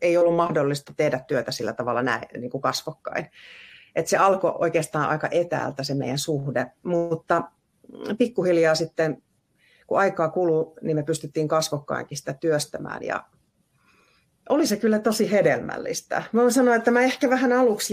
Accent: native